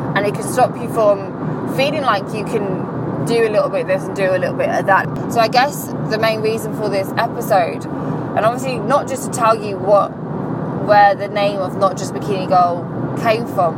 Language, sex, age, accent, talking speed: English, female, 20-39, British, 220 wpm